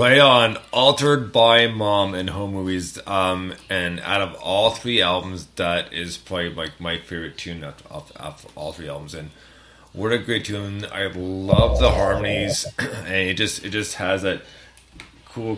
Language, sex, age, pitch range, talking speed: English, male, 30-49, 80-95 Hz, 165 wpm